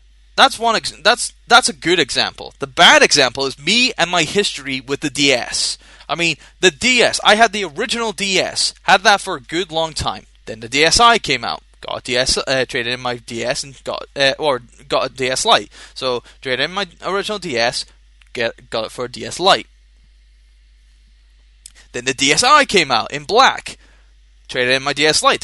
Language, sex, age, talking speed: English, male, 20-39, 190 wpm